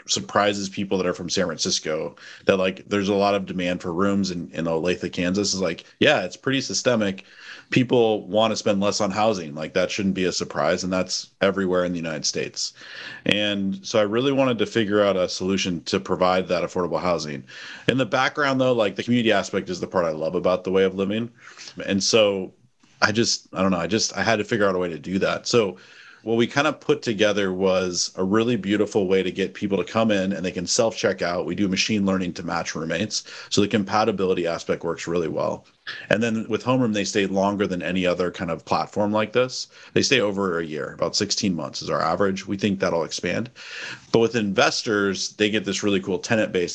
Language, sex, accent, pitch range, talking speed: English, male, American, 90-105 Hz, 225 wpm